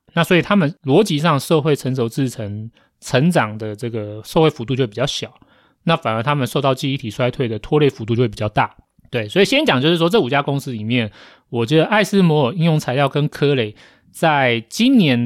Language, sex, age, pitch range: Chinese, male, 30-49, 120-160 Hz